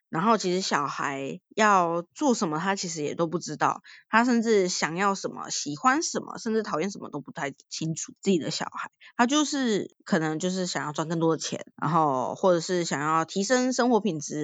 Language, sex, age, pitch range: Chinese, female, 20-39, 170-230 Hz